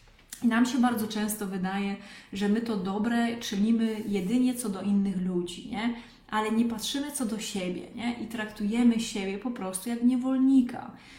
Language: Polish